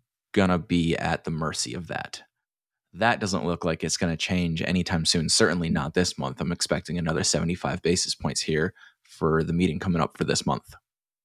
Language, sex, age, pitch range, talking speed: English, male, 20-39, 85-105 Hz, 195 wpm